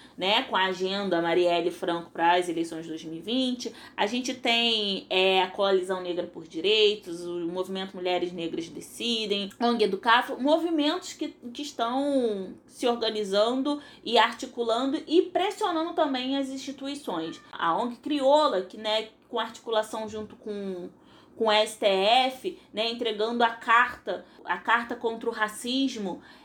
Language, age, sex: Portuguese, 20-39, female